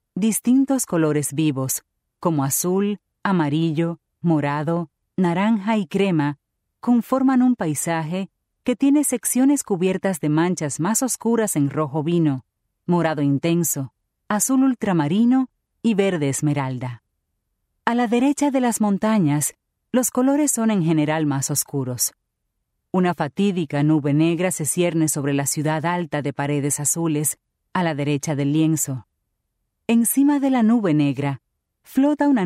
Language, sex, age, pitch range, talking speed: English, female, 40-59, 150-210 Hz, 130 wpm